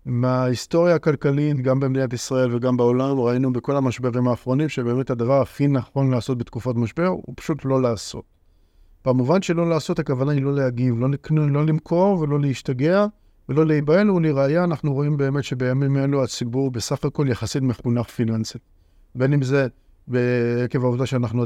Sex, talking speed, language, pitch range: male, 155 wpm, Hebrew, 120-155 Hz